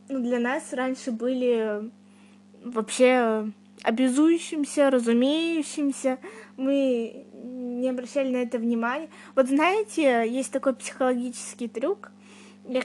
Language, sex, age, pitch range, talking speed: Russian, female, 20-39, 225-265 Hz, 100 wpm